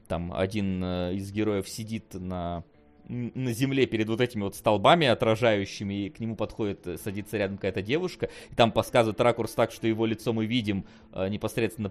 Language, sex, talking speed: Russian, male, 165 wpm